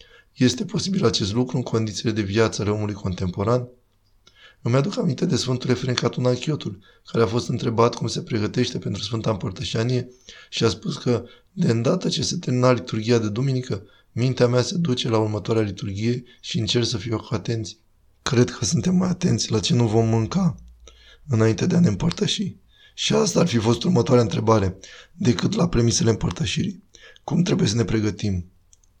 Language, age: Romanian, 20-39